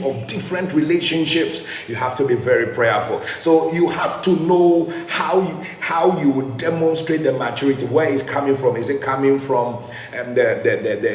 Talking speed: 160 wpm